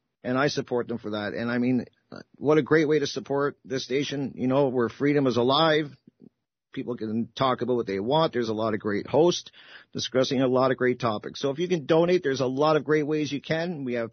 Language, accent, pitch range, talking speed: English, American, 125-160 Hz, 240 wpm